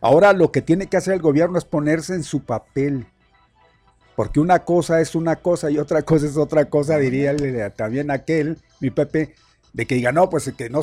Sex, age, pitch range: male, 50-69, 125-170 Hz